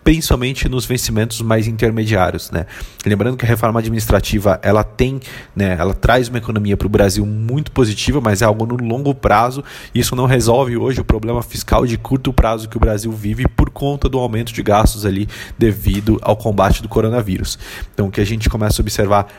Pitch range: 105-120 Hz